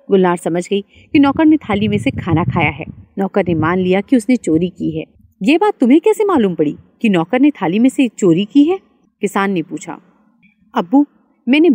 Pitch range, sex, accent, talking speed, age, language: 185-265 Hz, female, native, 210 wpm, 30-49, Hindi